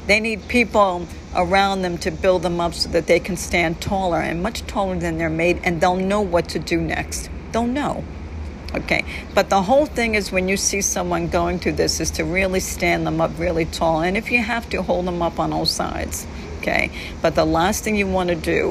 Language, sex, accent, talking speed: English, female, American, 225 wpm